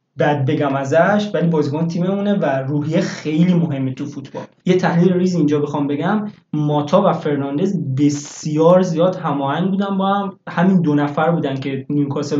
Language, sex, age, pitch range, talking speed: Persian, male, 20-39, 150-195 Hz, 160 wpm